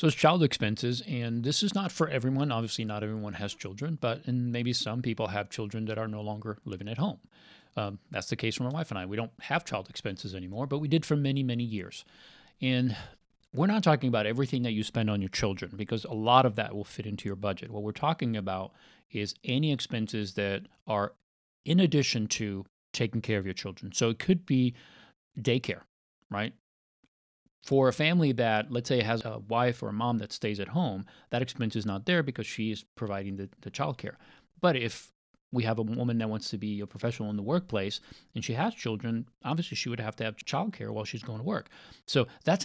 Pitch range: 110-140 Hz